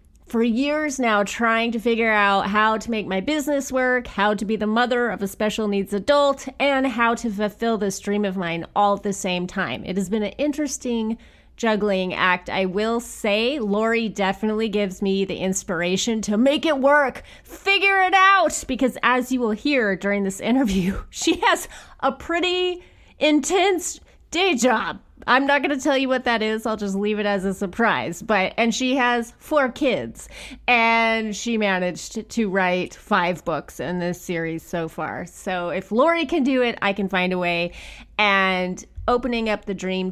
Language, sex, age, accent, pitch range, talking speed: English, female, 30-49, American, 190-245 Hz, 185 wpm